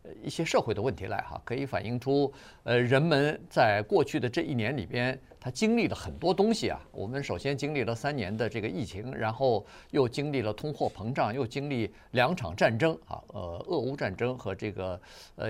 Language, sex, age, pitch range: Chinese, male, 50-69, 115-155 Hz